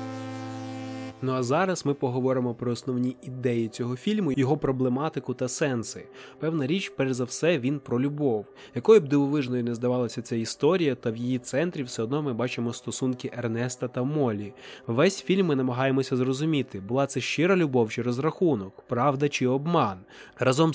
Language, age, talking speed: Ukrainian, 20-39, 160 wpm